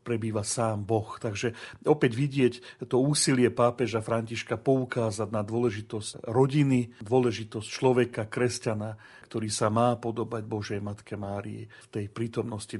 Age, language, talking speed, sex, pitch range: 40-59, Slovak, 125 wpm, male, 115-135 Hz